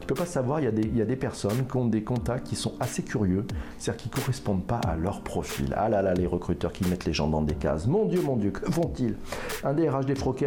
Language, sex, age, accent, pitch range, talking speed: French, male, 50-69, French, 100-130 Hz, 250 wpm